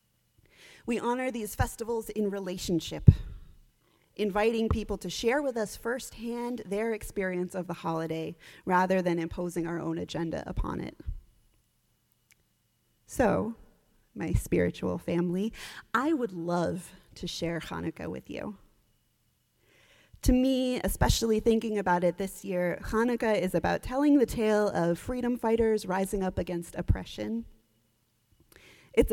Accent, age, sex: American, 30-49, female